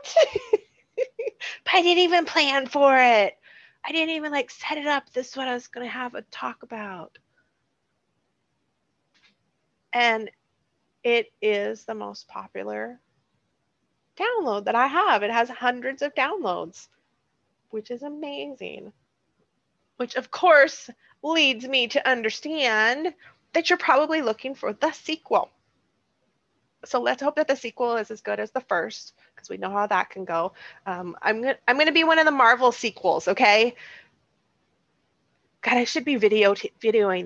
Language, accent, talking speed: English, American, 150 wpm